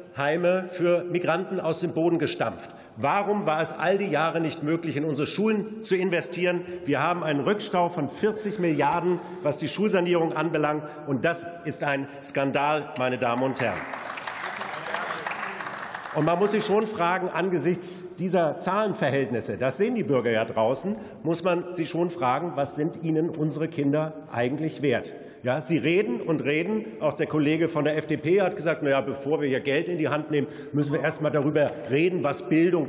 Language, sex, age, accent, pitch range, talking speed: German, male, 50-69, German, 145-175 Hz, 180 wpm